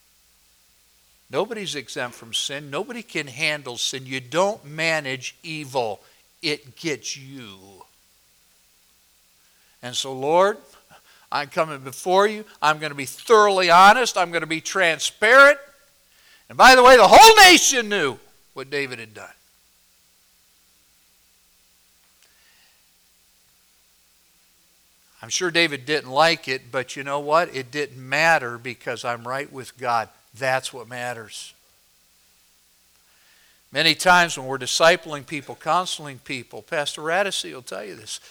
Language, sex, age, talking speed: English, male, 60-79, 125 wpm